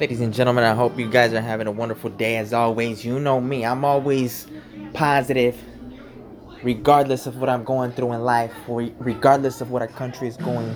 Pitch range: 110-135 Hz